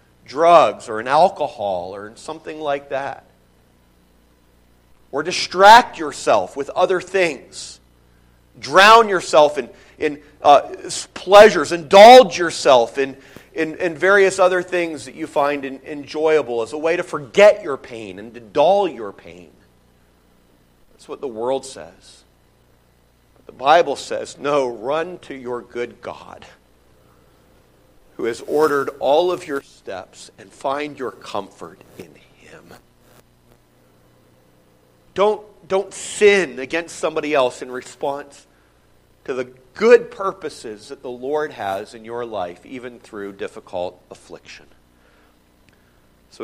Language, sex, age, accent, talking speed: English, male, 40-59, American, 125 wpm